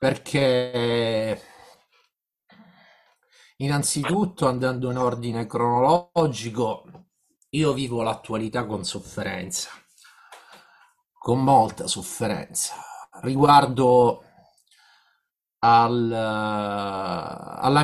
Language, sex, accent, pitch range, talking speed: Italian, male, native, 125-170 Hz, 55 wpm